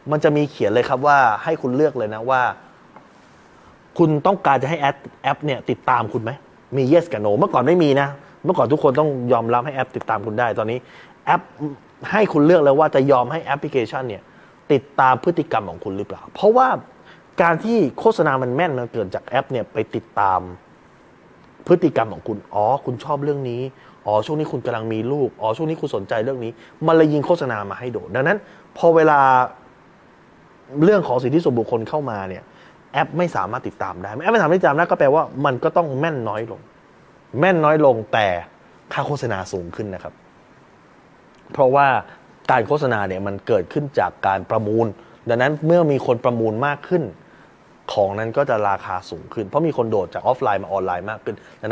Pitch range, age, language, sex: 110-150 Hz, 20-39, Thai, male